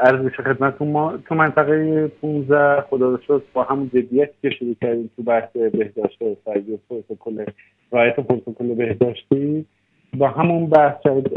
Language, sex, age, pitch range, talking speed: Persian, male, 50-69, 115-135 Hz, 130 wpm